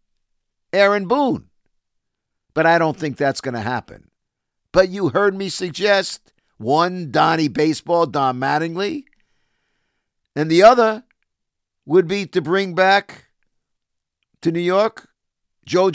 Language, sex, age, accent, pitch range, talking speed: English, male, 50-69, American, 125-180 Hz, 120 wpm